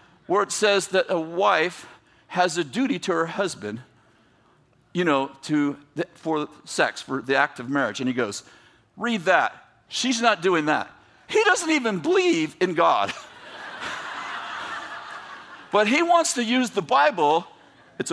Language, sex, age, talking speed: English, male, 50-69, 150 wpm